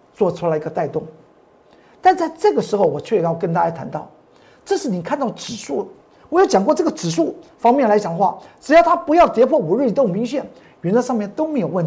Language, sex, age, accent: Chinese, male, 50-69, native